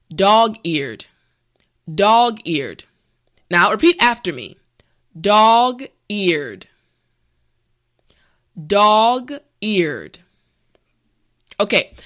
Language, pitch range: English, 170-240 Hz